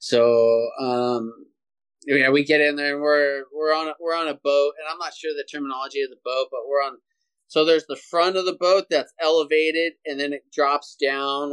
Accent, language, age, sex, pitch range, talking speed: American, English, 20-39, male, 125-150 Hz, 210 wpm